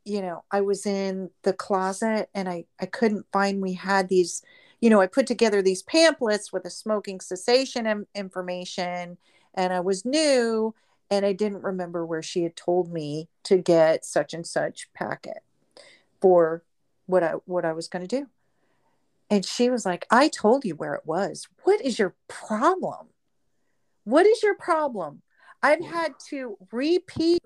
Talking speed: 170 wpm